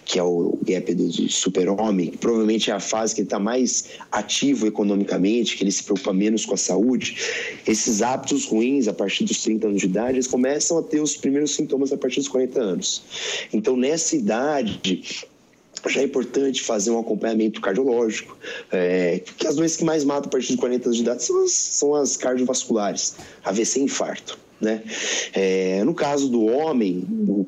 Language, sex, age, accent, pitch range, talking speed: Portuguese, male, 30-49, Brazilian, 105-130 Hz, 185 wpm